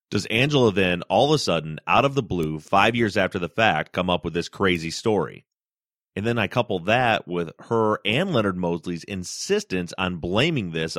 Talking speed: 195 wpm